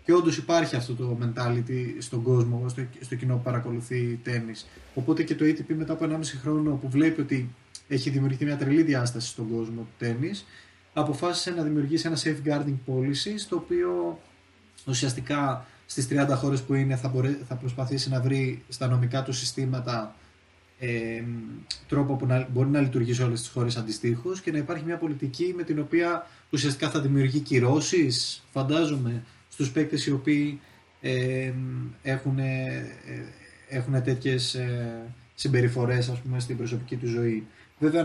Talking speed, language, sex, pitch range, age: 160 wpm, Greek, male, 120-150 Hz, 20-39